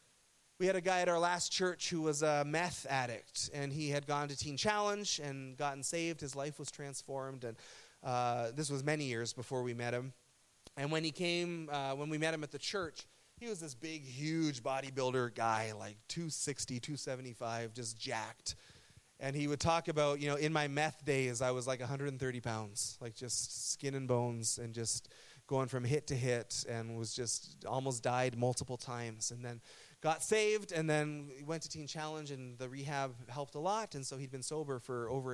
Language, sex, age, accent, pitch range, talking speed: English, male, 30-49, American, 125-155 Hz, 200 wpm